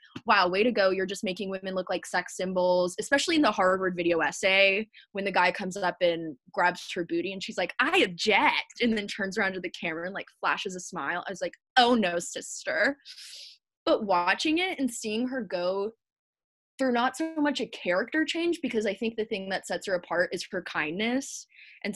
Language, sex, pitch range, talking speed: English, female, 180-250 Hz, 210 wpm